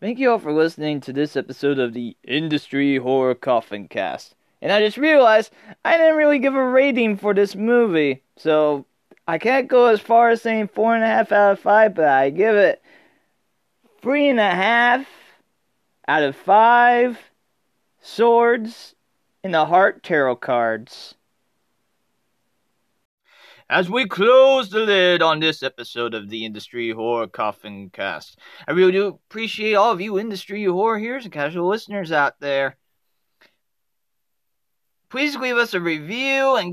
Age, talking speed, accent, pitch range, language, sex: 30-49, 155 wpm, American, 145-225 Hz, English, male